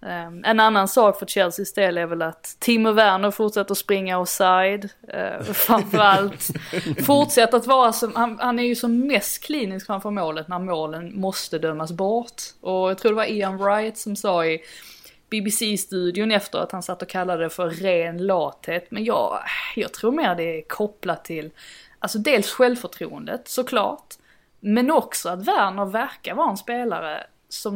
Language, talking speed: Swedish, 170 wpm